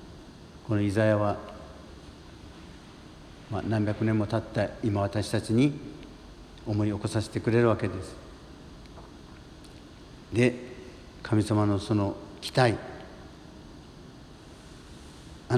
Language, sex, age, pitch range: Japanese, male, 60-79, 85-115 Hz